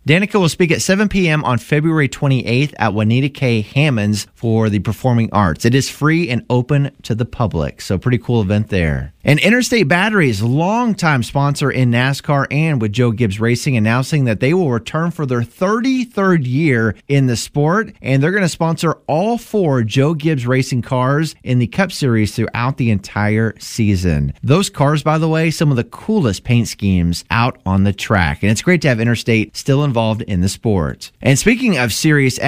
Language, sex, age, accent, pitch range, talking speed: English, male, 30-49, American, 110-155 Hz, 190 wpm